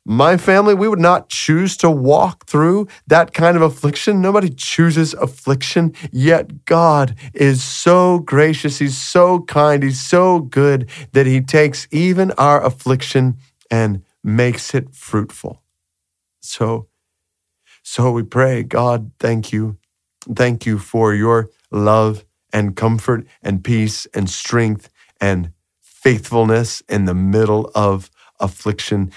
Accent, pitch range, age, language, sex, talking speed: American, 105-130 Hz, 40-59, English, male, 130 wpm